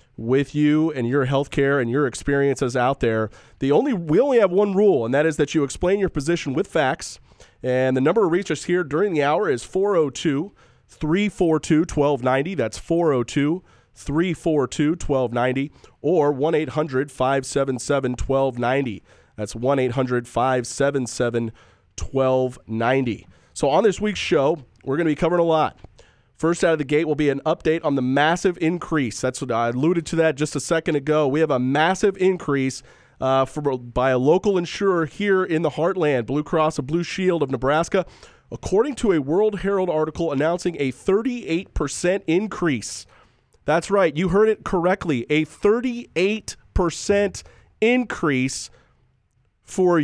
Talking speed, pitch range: 140 wpm, 130-175 Hz